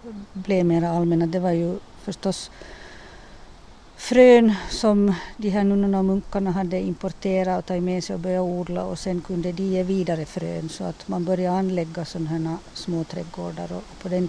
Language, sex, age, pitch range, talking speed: Finnish, female, 50-69, 170-185 Hz, 180 wpm